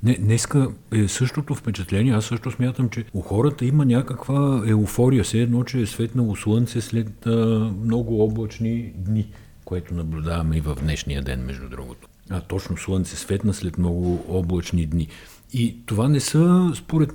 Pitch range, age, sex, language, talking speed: 90-115 Hz, 50-69, male, Bulgarian, 160 wpm